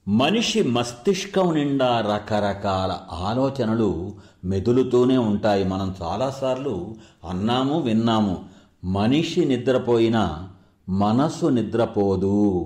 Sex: male